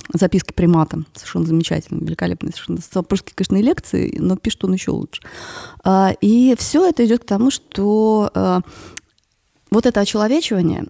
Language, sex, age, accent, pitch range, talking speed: Russian, female, 20-39, native, 165-215 Hz, 130 wpm